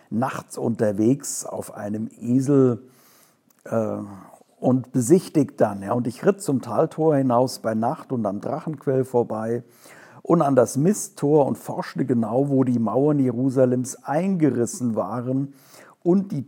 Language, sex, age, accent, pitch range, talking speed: German, male, 60-79, German, 115-135 Hz, 130 wpm